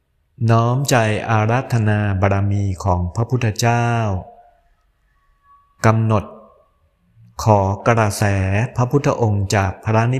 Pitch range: 95-115 Hz